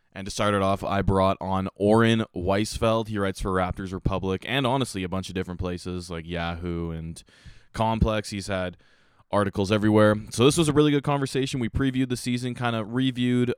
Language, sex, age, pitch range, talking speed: English, male, 20-39, 95-115 Hz, 195 wpm